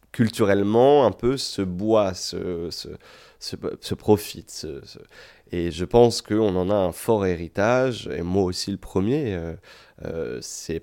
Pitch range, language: 85-105 Hz, French